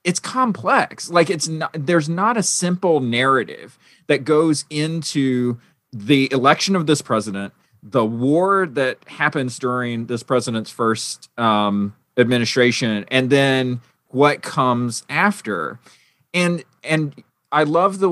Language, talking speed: English, 125 wpm